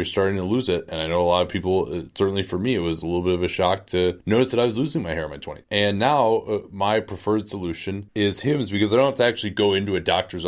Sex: male